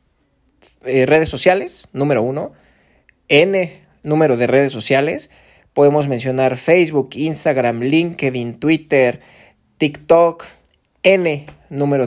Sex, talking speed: male, 90 wpm